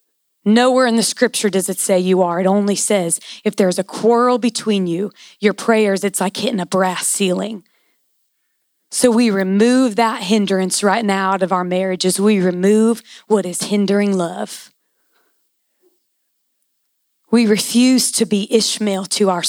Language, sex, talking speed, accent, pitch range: English, female, 155 wpm, American, 190-225 Hz